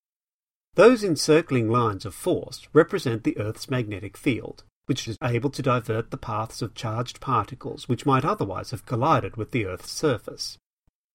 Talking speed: 155 wpm